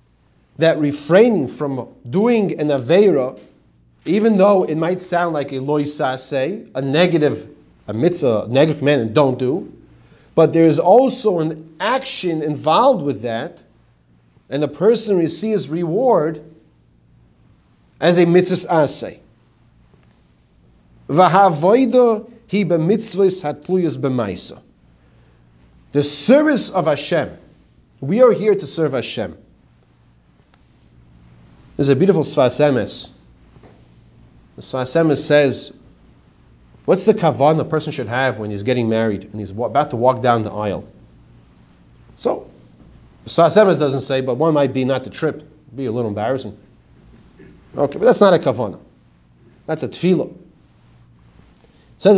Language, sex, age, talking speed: English, male, 40-59, 125 wpm